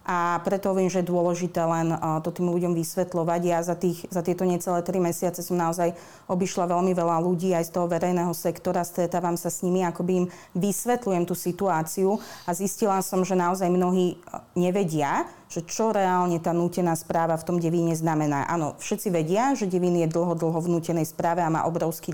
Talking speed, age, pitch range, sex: 185 wpm, 30-49, 170-185 Hz, female